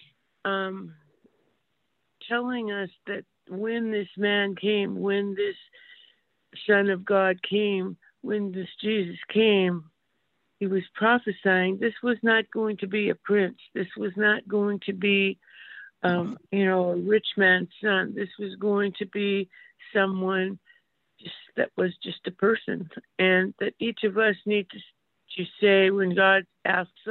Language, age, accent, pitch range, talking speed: English, 60-79, American, 185-220 Hz, 145 wpm